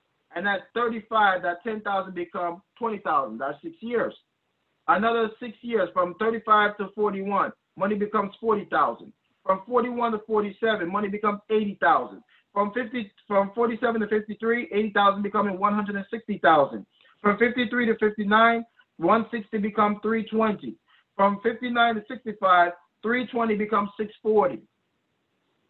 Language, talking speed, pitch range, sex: English, 115 wpm, 185-225 Hz, male